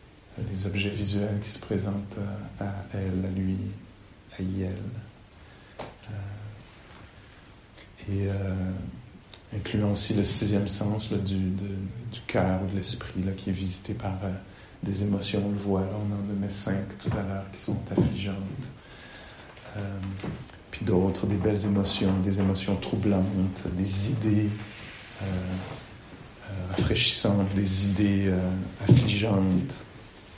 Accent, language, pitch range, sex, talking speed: French, English, 95-110 Hz, male, 130 wpm